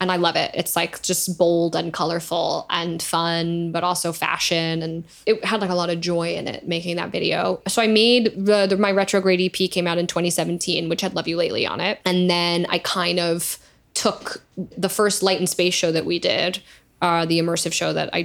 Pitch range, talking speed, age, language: 170-190 Hz, 225 wpm, 10-29, English